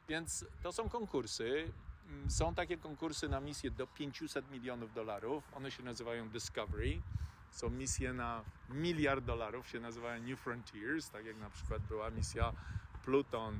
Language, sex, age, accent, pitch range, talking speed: Polish, male, 40-59, native, 115-145 Hz, 145 wpm